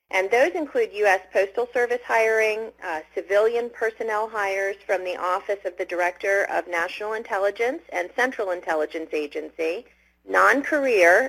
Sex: female